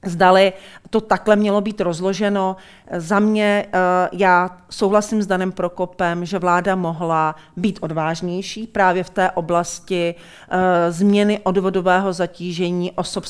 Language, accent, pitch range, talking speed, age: Czech, native, 175-195 Hz, 115 wpm, 40-59